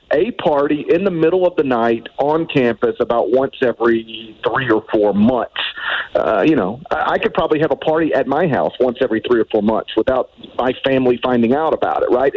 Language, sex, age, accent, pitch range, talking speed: English, male, 40-59, American, 120-195 Hz, 210 wpm